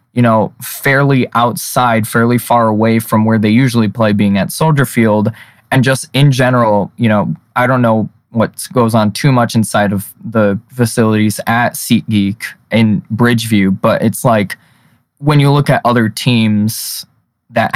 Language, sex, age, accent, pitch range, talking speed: English, male, 20-39, American, 105-130 Hz, 165 wpm